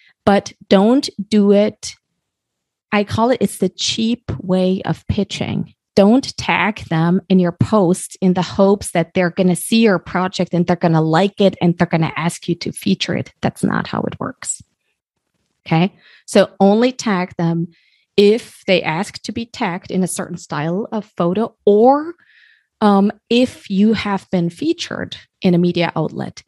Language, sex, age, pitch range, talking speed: English, female, 30-49, 175-210 Hz, 170 wpm